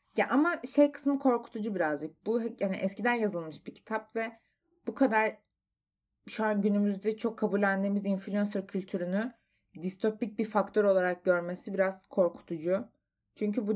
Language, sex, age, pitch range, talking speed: Turkish, female, 30-49, 185-230 Hz, 135 wpm